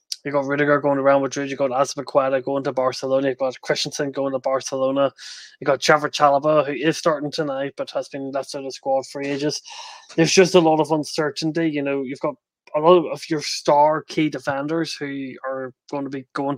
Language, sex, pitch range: English, male, 135-150 Hz